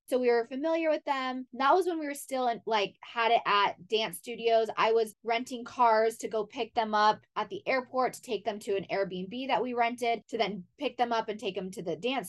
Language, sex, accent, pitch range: English, female, American, 215-260 Hz